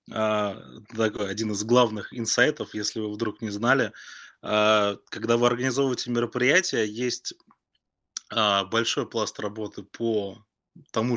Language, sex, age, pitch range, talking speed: Russian, male, 20-39, 105-120 Hz, 125 wpm